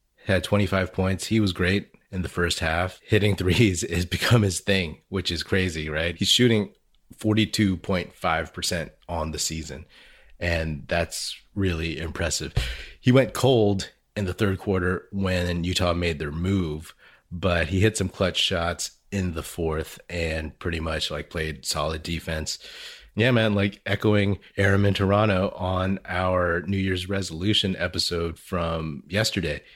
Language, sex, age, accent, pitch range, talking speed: English, male, 30-49, American, 85-100 Hz, 145 wpm